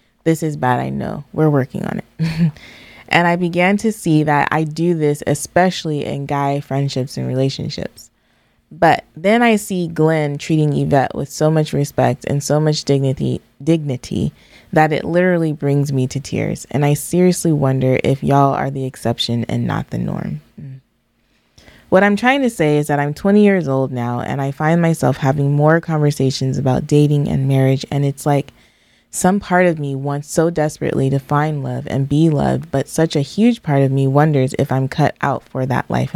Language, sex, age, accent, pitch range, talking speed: English, female, 20-39, American, 135-160 Hz, 190 wpm